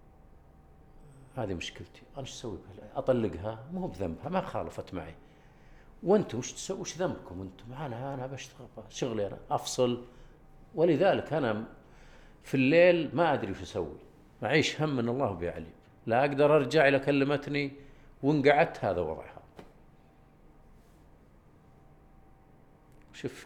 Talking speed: 120 wpm